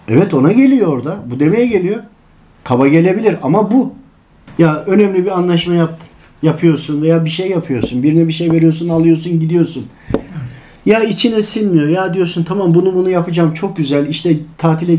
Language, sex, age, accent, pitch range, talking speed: Turkish, male, 50-69, native, 155-215 Hz, 160 wpm